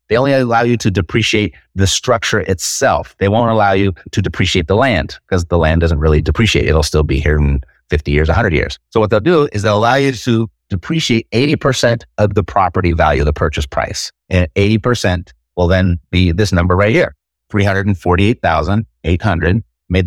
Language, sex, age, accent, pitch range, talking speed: English, male, 30-49, American, 85-120 Hz, 180 wpm